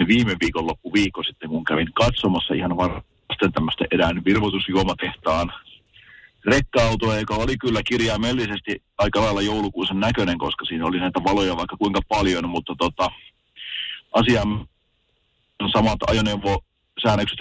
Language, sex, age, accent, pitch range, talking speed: Finnish, male, 40-59, native, 95-105 Hz, 115 wpm